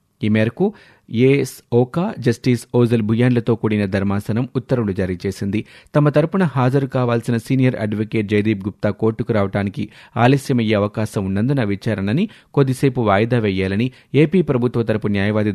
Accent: native